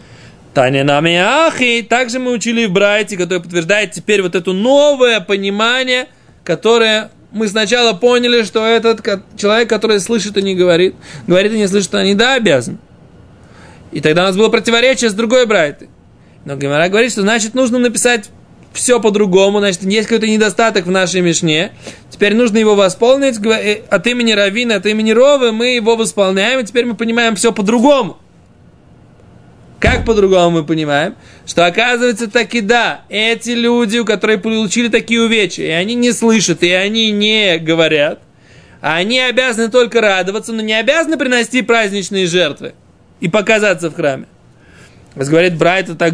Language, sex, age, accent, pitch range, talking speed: Russian, male, 20-39, native, 175-235 Hz, 155 wpm